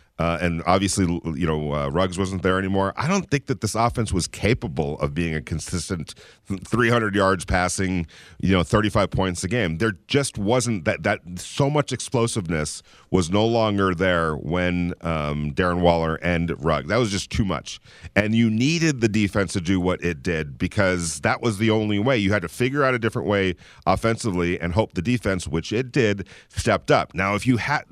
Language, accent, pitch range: English, American, 90-115 Hz